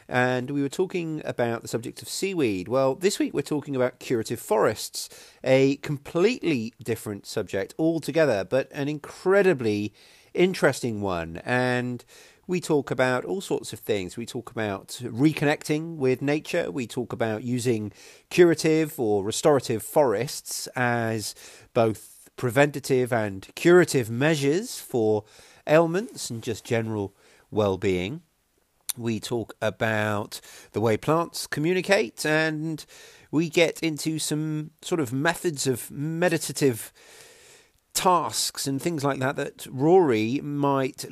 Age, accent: 40-59, British